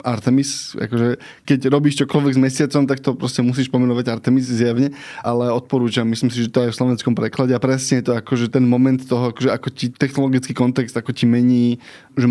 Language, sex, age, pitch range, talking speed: Slovak, male, 20-39, 125-140 Hz, 195 wpm